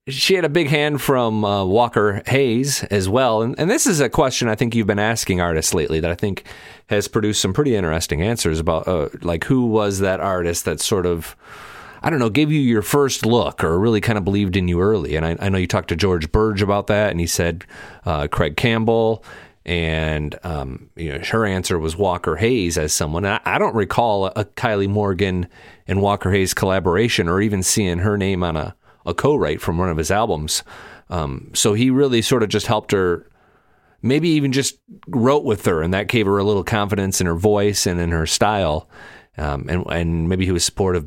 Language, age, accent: English, 30-49, American